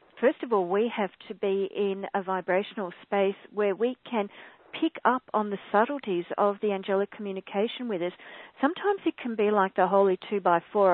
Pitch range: 190-230 Hz